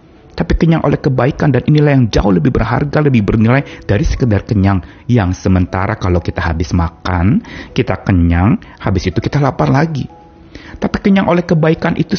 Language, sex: Indonesian, male